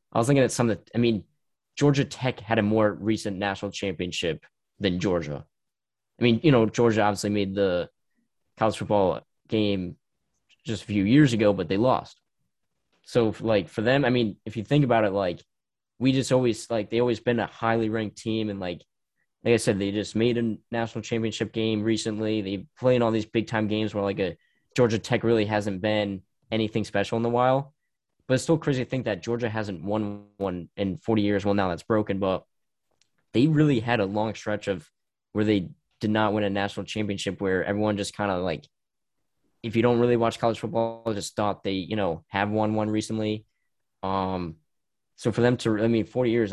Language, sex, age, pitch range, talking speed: English, male, 10-29, 100-115 Hz, 205 wpm